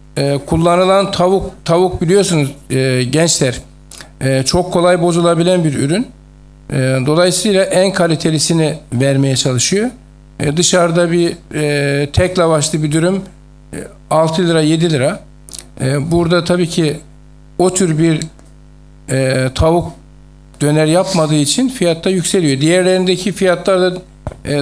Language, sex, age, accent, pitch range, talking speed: Turkish, male, 60-79, native, 140-175 Hz, 120 wpm